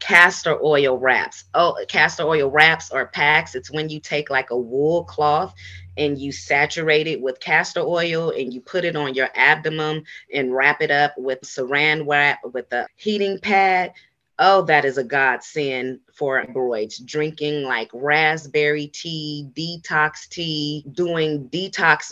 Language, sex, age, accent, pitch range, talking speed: English, female, 30-49, American, 135-160 Hz, 155 wpm